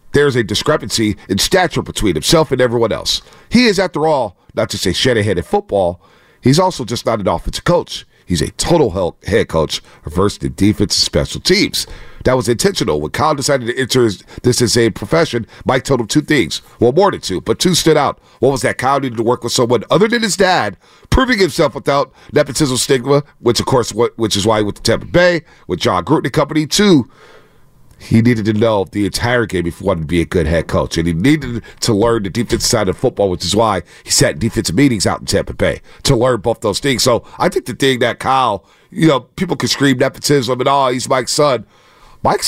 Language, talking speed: English, 225 wpm